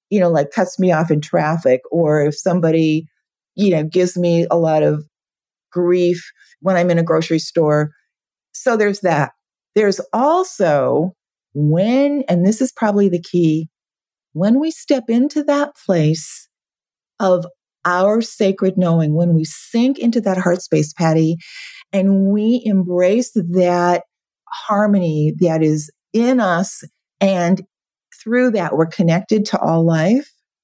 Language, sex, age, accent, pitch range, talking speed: English, female, 40-59, American, 165-215 Hz, 140 wpm